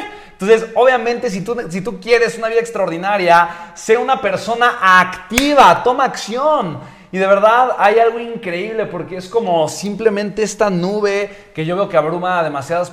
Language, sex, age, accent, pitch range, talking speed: Spanish, male, 30-49, Mexican, 155-210 Hz, 165 wpm